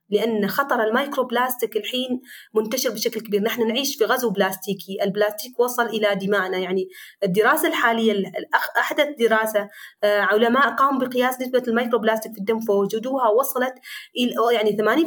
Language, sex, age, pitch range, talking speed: Arabic, female, 30-49, 205-255 Hz, 130 wpm